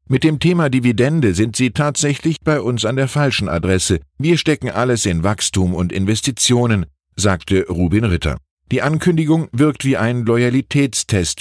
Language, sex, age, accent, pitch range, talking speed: German, male, 50-69, German, 90-125 Hz, 155 wpm